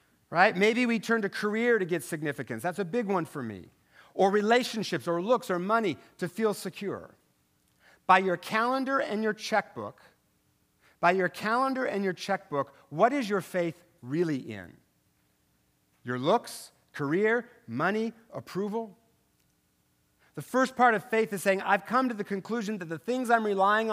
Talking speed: 160 wpm